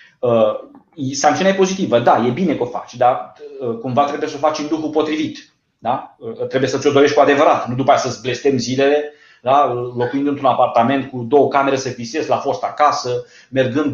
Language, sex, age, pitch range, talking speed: Romanian, male, 30-49, 125-155 Hz, 190 wpm